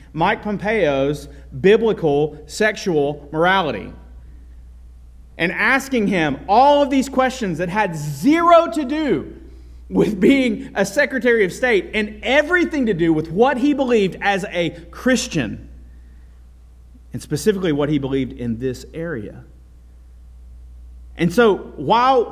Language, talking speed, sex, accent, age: English, 120 wpm, male, American, 40-59